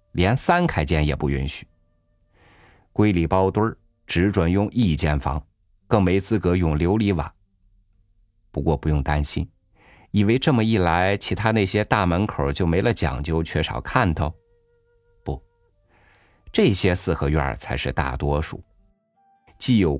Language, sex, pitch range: Chinese, male, 80-105 Hz